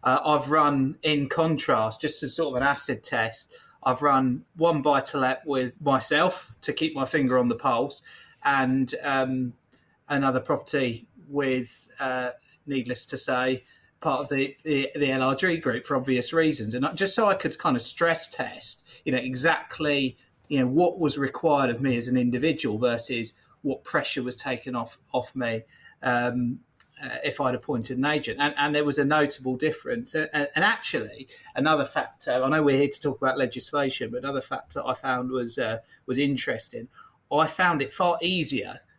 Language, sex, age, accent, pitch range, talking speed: English, male, 30-49, British, 130-150 Hz, 180 wpm